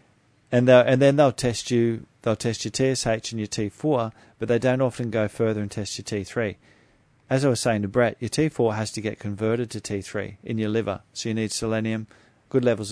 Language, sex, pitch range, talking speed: English, male, 105-125 Hz, 220 wpm